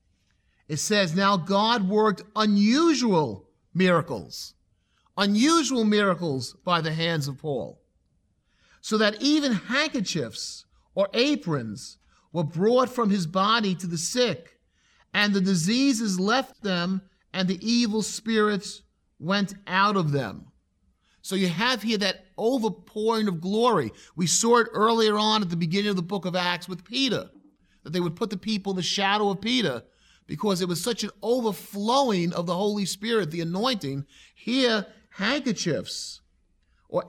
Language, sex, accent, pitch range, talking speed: English, male, American, 170-225 Hz, 145 wpm